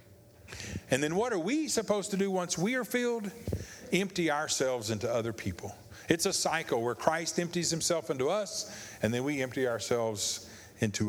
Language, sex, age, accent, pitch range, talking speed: English, male, 50-69, American, 100-165 Hz, 175 wpm